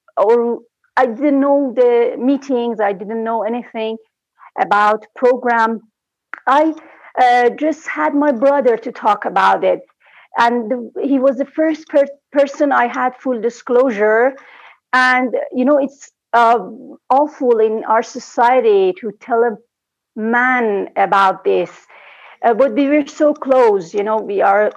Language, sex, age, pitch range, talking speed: English, female, 40-59, 225-295 Hz, 140 wpm